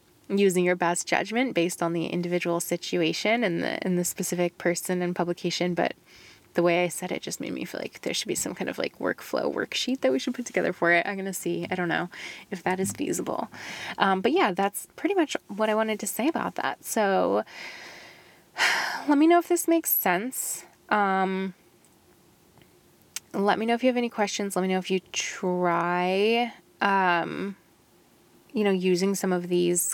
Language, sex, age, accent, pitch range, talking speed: English, female, 10-29, American, 180-205 Hz, 195 wpm